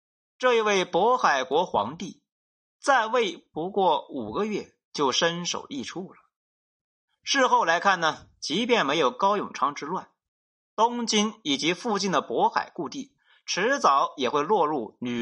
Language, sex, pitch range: Chinese, male, 175-265 Hz